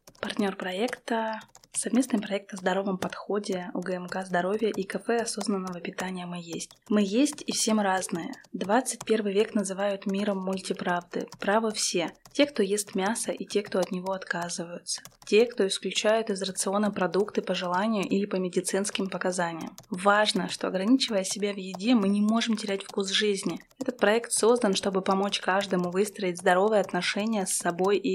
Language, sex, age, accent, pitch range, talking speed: Russian, female, 20-39, native, 190-220 Hz, 155 wpm